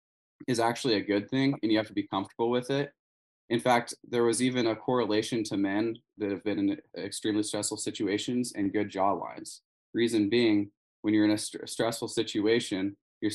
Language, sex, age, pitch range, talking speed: English, male, 20-39, 100-115 Hz, 190 wpm